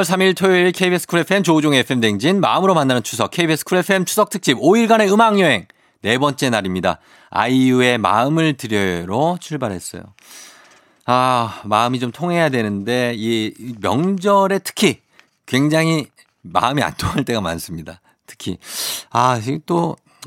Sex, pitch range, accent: male, 105-165 Hz, native